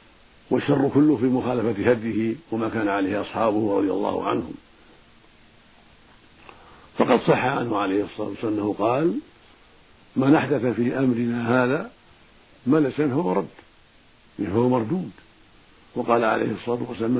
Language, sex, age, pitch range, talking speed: Arabic, male, 60-79, 110-130 Hz, 120 wpm